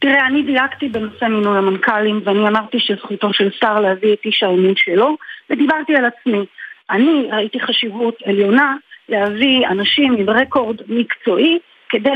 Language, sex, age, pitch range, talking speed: Hebrew, female, 40-59, 215-275 Hz, 145 wpm